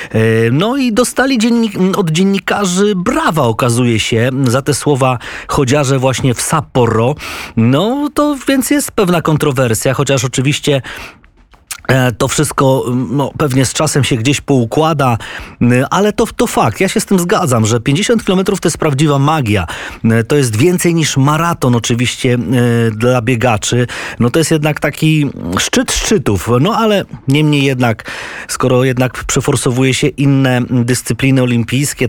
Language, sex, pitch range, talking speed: Polish, male, 125-165 Hz, 140 wpm